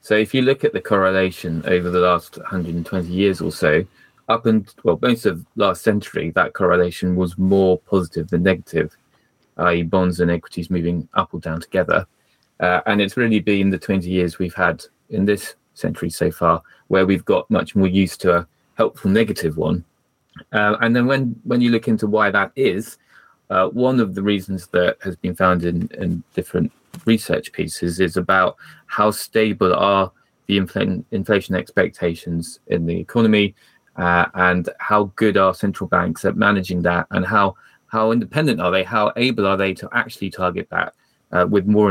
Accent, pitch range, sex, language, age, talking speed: British, 90-105 Hz, male, English, 20-39, 180 wpm